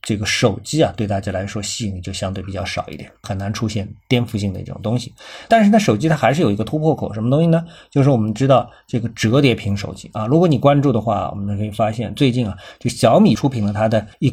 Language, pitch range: Chinese, 105-135 Hz